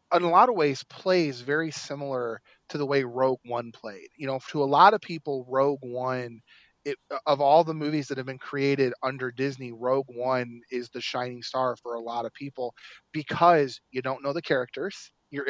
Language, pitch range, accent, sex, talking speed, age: English, 125-155 Hz, American, male, 200 wpm, 30-49